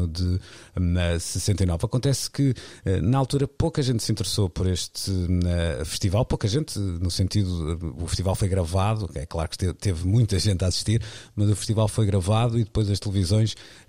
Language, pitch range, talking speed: Portuguese, 90-115 Hz, 165 wpm